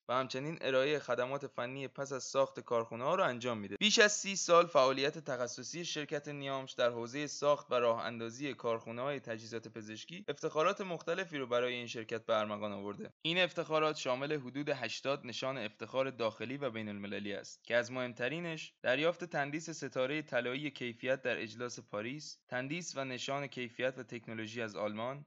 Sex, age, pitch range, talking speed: male, 20-39, 120-150 Hz, 165 wpm